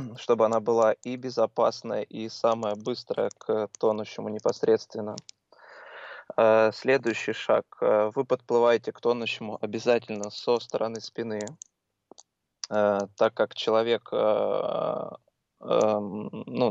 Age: 20-39